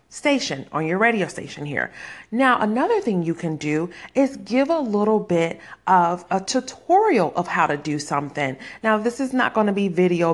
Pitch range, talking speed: 165-245 Hz, 190 wpm